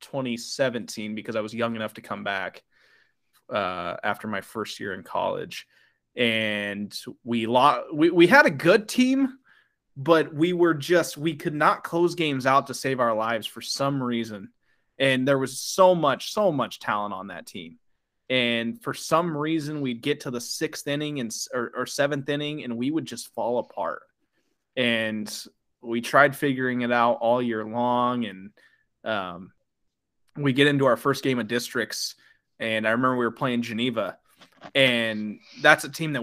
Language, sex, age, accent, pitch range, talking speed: English, male, 20-39, American, 115-140 Hz, 175 wpm